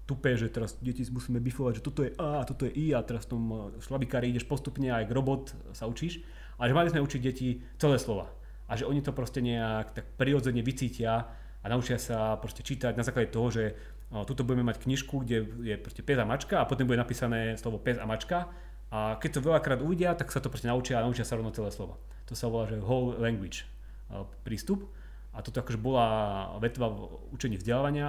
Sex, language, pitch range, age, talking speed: male, Slovak, 110-130 Hz, 30-49, 205 wpm